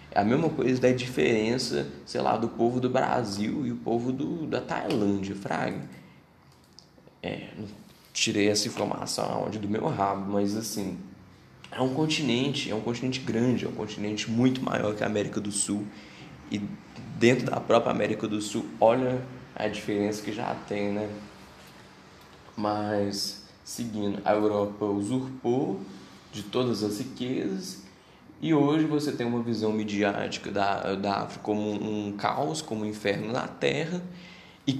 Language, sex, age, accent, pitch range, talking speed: Portuguese, male, 10-29, Brazilian, 105-130 Hz, 150 wpm